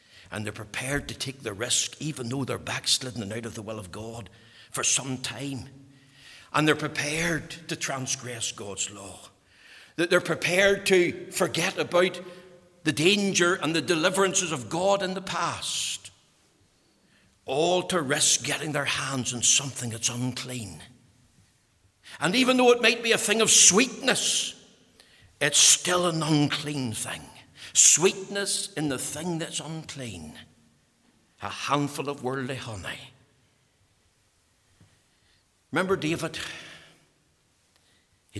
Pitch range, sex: 115-150 Hz, male